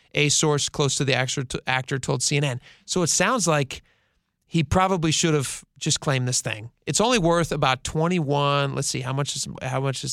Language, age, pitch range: English, 30-49, 140-175 Hz